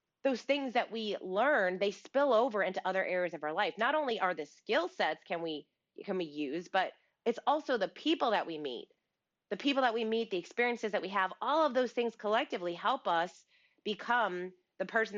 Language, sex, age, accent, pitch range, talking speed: English, female, 30-49, American, 175-240 Hz, 210 wpm